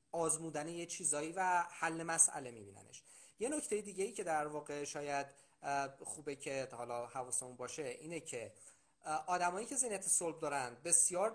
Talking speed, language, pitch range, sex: 150 wpm, Persian, 130-175 Hz, male